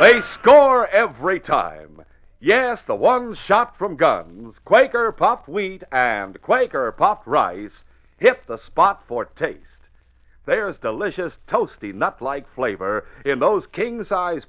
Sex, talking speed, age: male, 115 wpm, 50-69